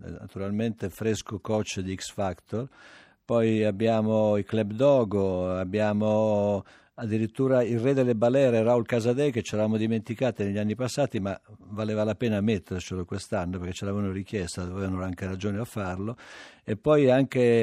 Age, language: 50-69, Italian